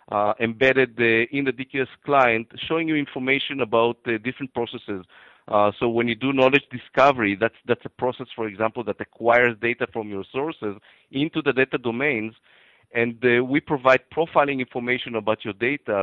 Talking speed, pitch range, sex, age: 175 wpm, 105-135 Hz, male, 50-69